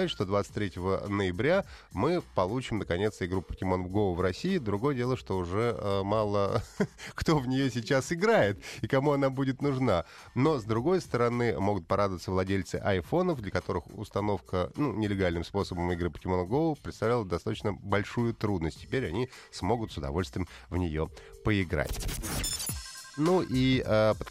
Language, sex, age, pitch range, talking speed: Russian, male, 30-49, 95-130 Hz, 150 wpm